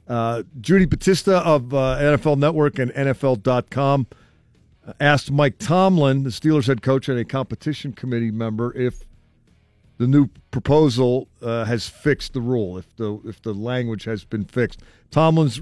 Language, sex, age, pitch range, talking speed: English, male, 50-69, 115-150 Hz, 145 wpm